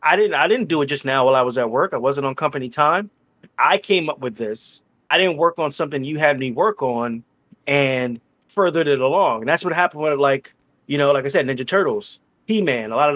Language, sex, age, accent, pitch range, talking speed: English, male, 30-49, American, 135-175 Hz, 250 wpm